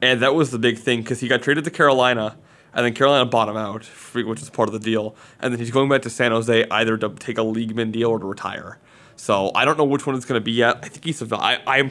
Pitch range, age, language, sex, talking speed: 110-130 Hz, 20-39, English, male, 290 wpm